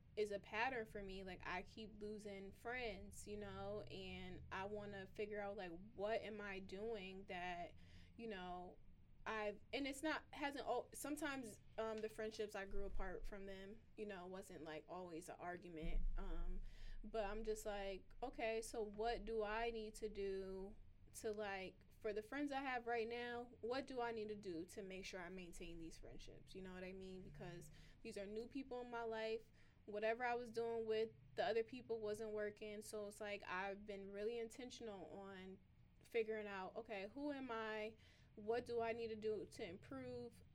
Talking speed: 190 wpm